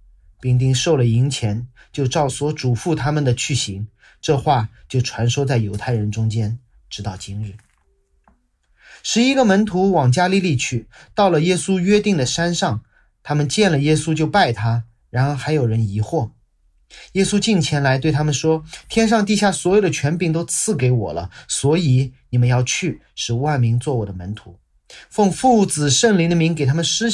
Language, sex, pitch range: Chinese, male, 105-170 Hz